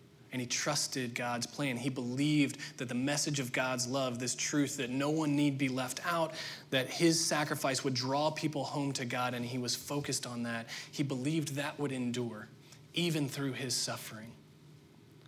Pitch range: 125-145 Hz